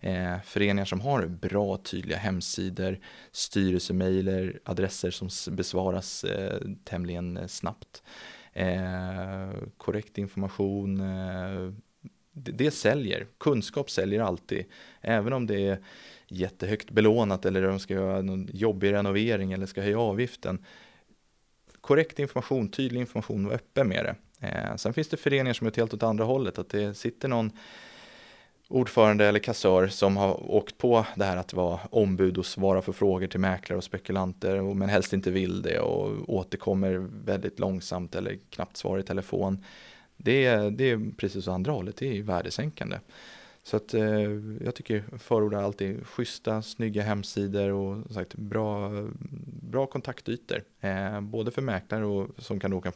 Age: 20-39